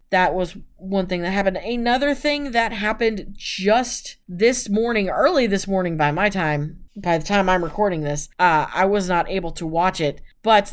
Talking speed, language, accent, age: 190 wpm, English, American, 30-49